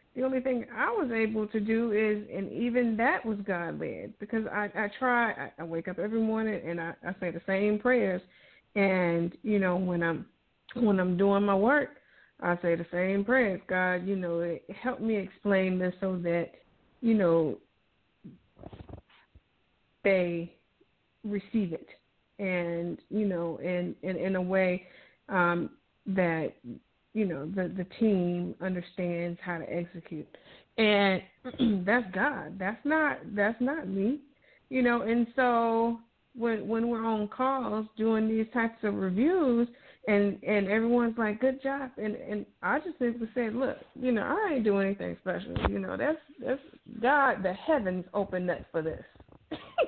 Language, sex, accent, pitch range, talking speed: English, female, American, 185-245 Hz, 160 wpm